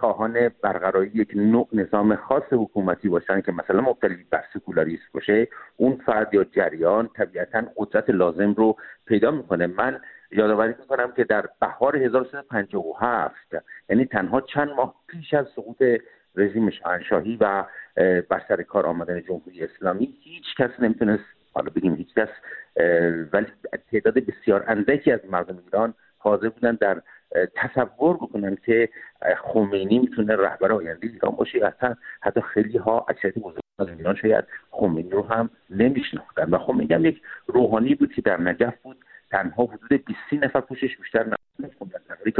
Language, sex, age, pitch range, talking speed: English, male, 50-69, 100-140 Hz, 135 wpm